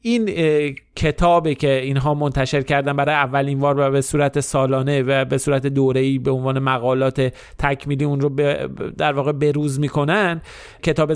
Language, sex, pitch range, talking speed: Persian, male, 140-180 Hz, 155 wpm